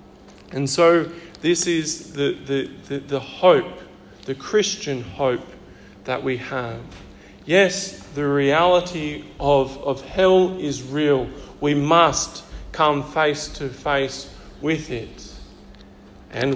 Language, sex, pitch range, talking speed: English, male, 125-145 Hz, 115 wpm